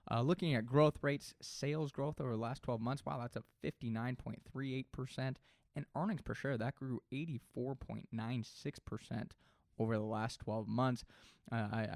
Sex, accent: male, American